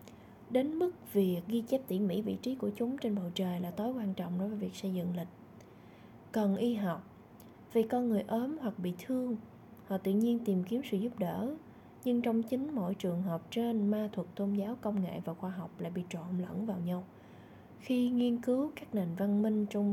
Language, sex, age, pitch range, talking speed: Vietnamese, female, 20-39, 185-230 Hz, 215 wpm